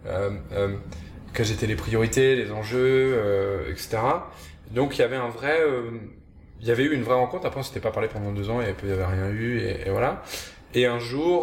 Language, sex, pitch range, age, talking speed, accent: French, male, 100-120 Hz, 20-39, 230 wpm, French